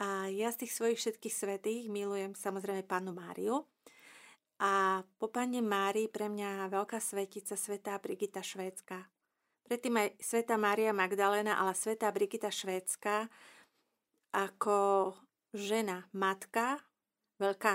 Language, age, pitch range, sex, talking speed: Slovak, 40-59, 200-225 Hz, female, 120 wpm